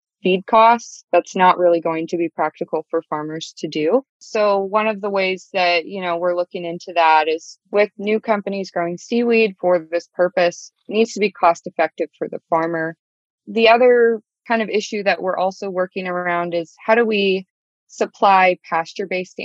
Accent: American